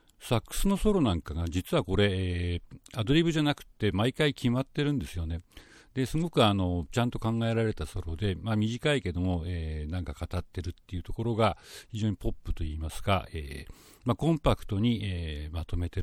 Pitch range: 85-115 Hz